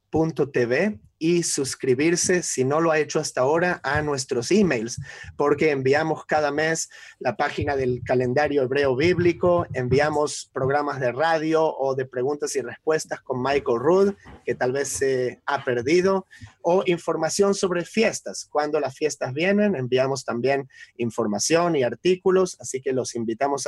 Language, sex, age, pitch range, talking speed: English, male, 30-49, 130-175 Hz, 150 wpm